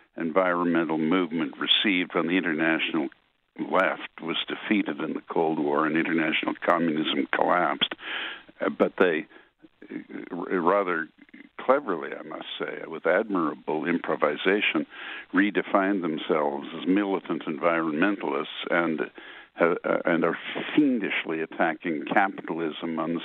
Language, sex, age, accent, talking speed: English, male, 60-79, American, 110 wpm